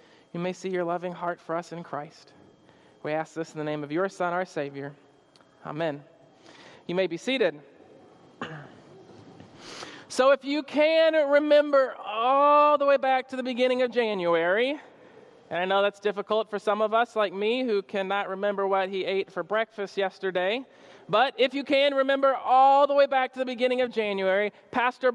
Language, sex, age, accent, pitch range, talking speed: English, male, 40-59, American, 205-275 Hz, 175 wpm